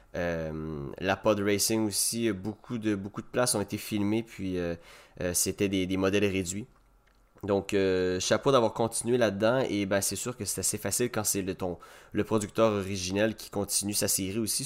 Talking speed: 190 wpm